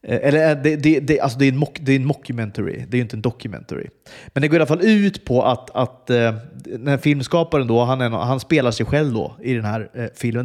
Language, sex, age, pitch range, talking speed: Swedish, male, 30-49, 115-150 Hz, 260 wpm